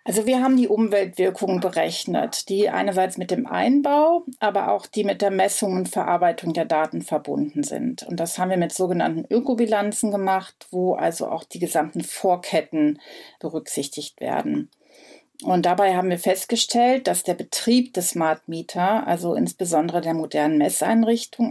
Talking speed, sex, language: 155 wpm, female, German